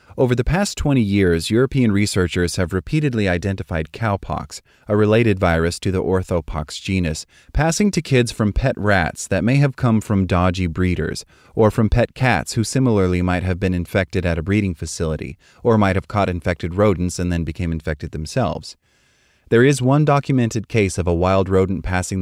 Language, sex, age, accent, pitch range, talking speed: English, male, 30-49, American, 85-110 Hz, 180 wpm